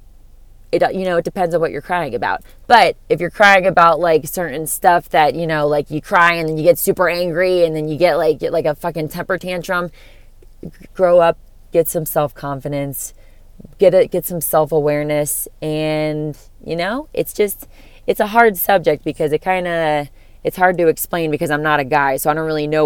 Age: 20-39